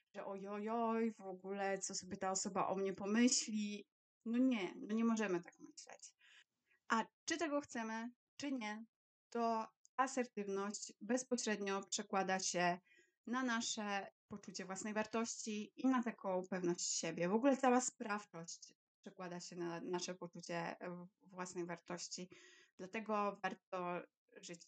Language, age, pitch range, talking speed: Polish, 20-39, 190-245 Hz, 130 wpm